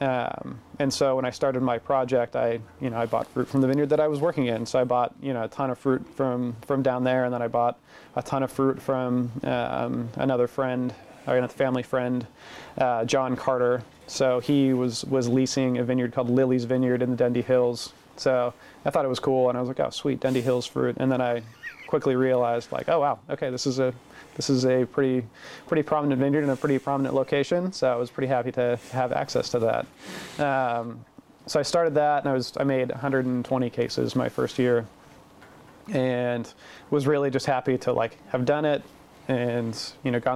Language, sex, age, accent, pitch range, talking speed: English, male, 30-49, American, 125-135 Hz, 215 wpm